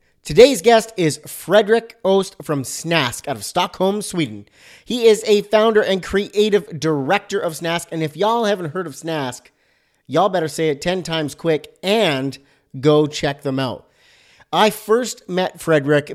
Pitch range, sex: 140-190 Hz, male